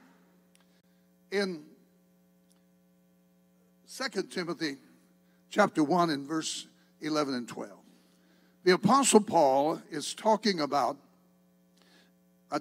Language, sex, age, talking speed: English, male, 60-79, 80 wpm